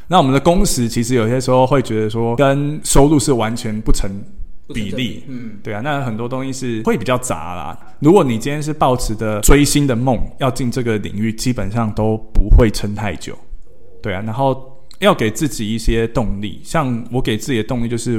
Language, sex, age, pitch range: Chinese, male, 20-39, 105-130 Hz